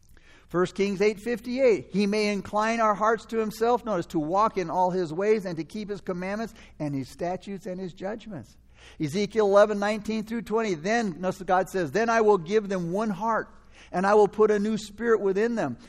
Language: English